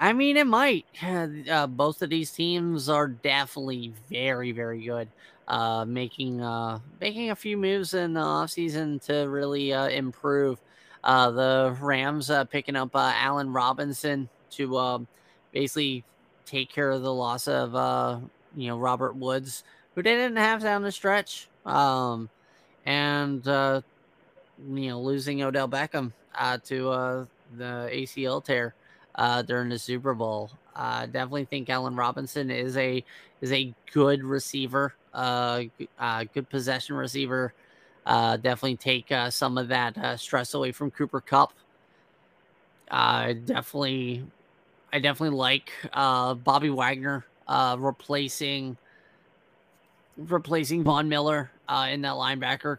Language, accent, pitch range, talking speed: English, American, 125-145 Hz, 140 wpm